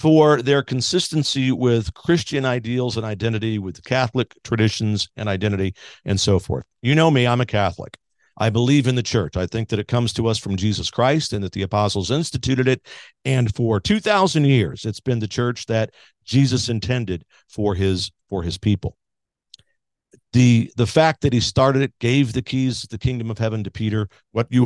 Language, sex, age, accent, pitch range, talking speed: English, male, 50-69, American, 105-130 Hz, 185 wpm